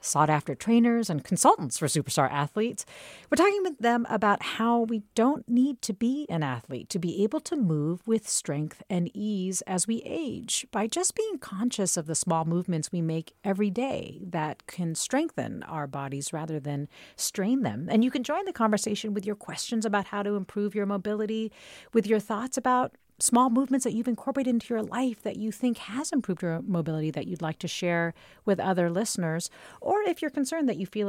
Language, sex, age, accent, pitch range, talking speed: English, female, 40-59, American, 165-235 Hz, 195 wpm